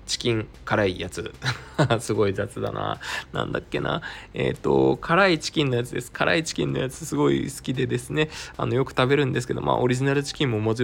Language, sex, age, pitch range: Japanese, male, 20-39, 95-125 Hz